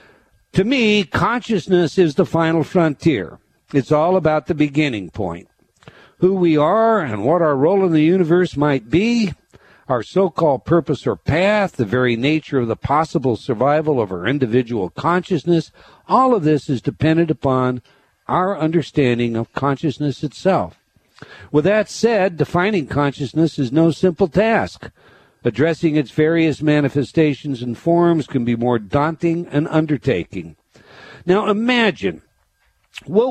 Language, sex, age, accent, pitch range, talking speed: English, male, 60-79, American, 130-185 Hz, 135 wpm